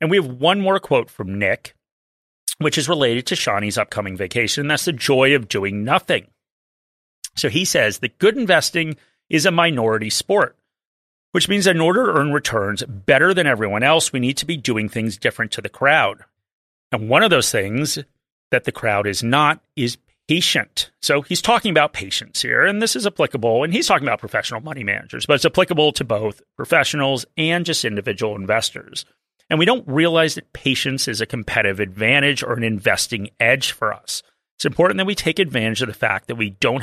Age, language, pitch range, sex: 30-49, English, 110-155 Hz, male